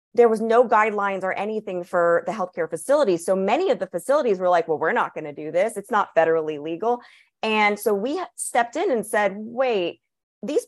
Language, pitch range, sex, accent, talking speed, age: English, 170-220 Hz, female, American, 210 wpm, 30-49